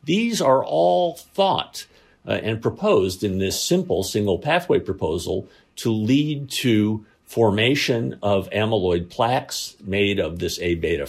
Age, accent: 50-69, American